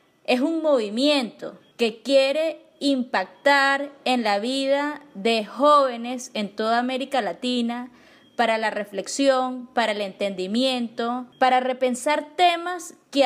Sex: female